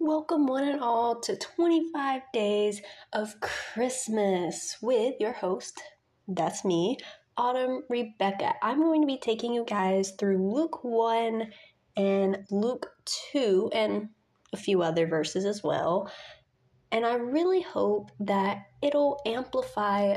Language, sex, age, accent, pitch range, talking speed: English, female, 20-39, American, 180-245 Hz, 130 wpm